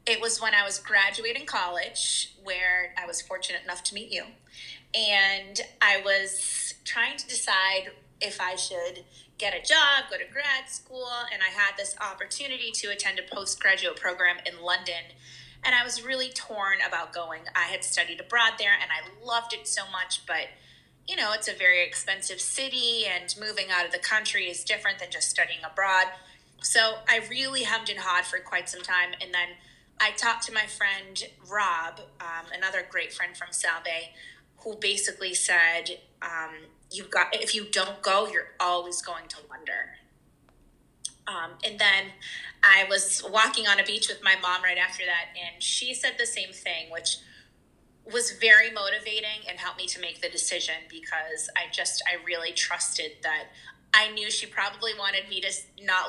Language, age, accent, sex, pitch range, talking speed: English, 20-39, American, female, 180-220 Hz, 180 wpm